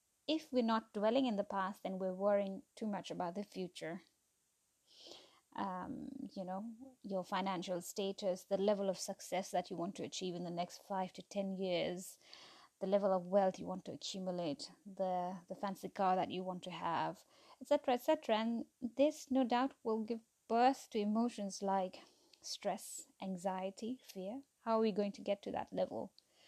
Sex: female